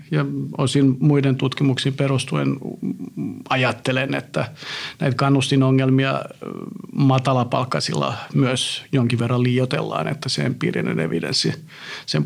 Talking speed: 95 wpm